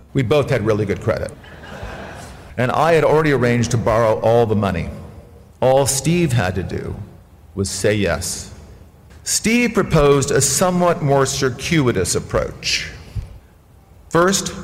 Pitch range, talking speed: 100-135 Hz, 130 wpm